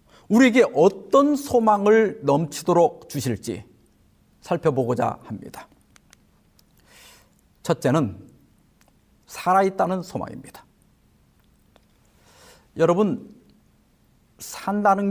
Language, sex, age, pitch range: Korean, male, 50-69, 150-220 Hz